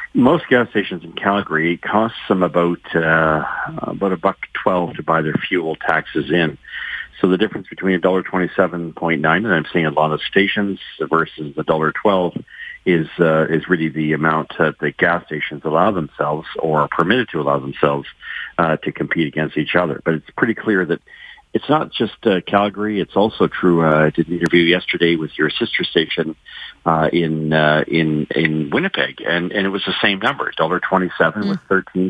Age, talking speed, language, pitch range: 50-69, 195 wpm, English, 80-95 Hz